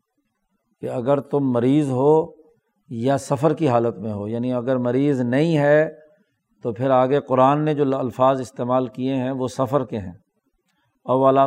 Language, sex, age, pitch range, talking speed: Urdu, male, 50-69, 125-145 Hz, 155 wpm